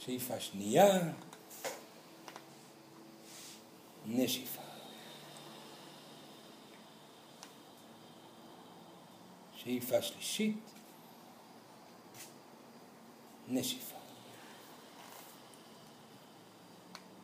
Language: Hebrew